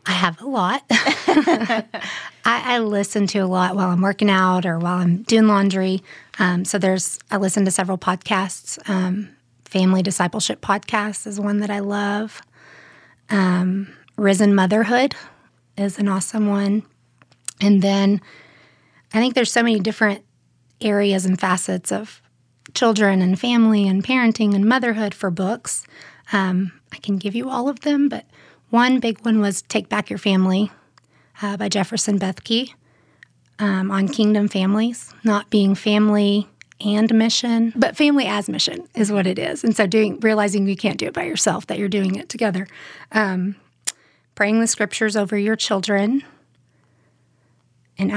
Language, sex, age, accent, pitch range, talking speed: English, female, 30-49, American, 190-225 Hz, 155 wpm